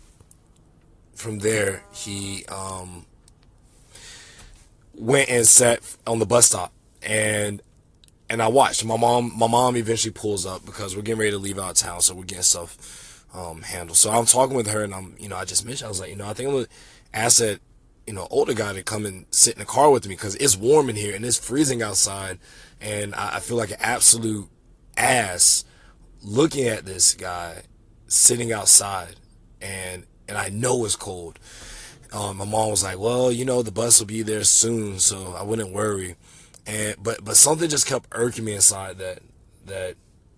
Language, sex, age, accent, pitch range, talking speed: English, male, 20-39, American, 95-120 Hz, 195 wpm